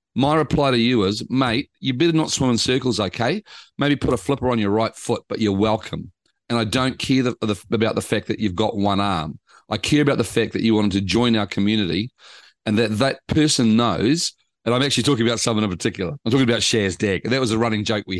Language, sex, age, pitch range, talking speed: English, male, 40-59, 105-125 Hz, 245 wpm